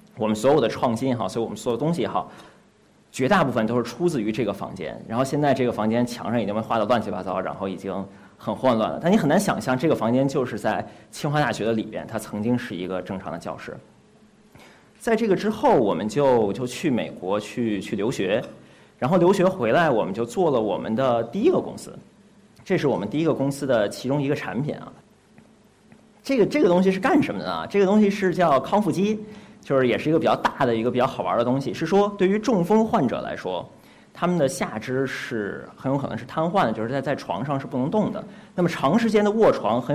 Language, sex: Chinese, male